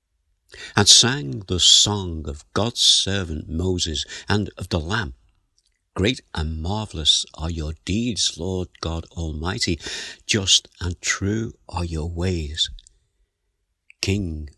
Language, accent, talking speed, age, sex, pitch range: English, British, 115 wpm, 60-79, male, 80-105 Hz